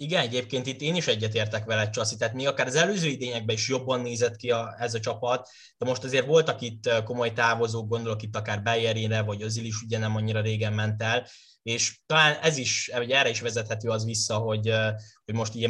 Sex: male